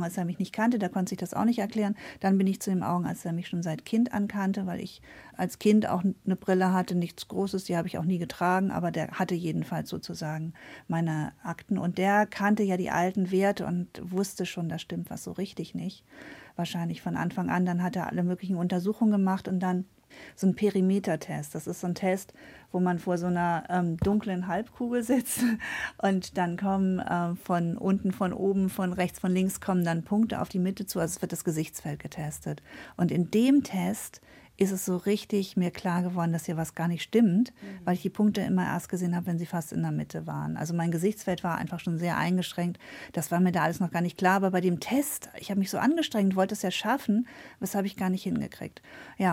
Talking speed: 230 wpm